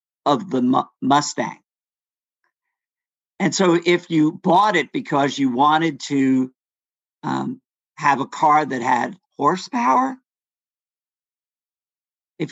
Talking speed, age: 100 wpm, 50-69